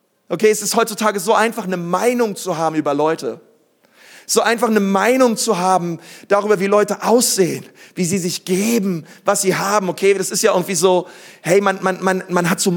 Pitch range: 180-220 Hz